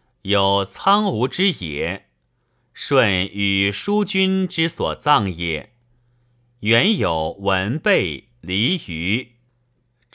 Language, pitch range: Chinese, 105-125 Hz